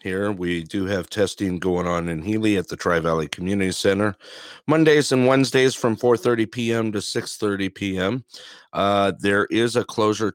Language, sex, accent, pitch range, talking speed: English, male, American, 85-110 Hz, 155 wpm